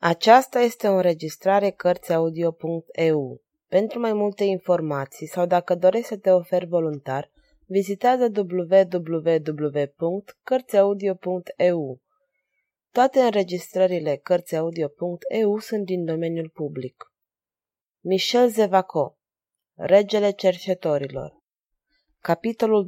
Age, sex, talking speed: 30-49, female, 80 wpm